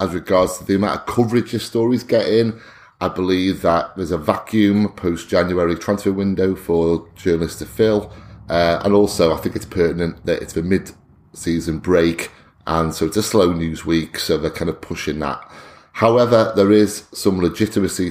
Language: English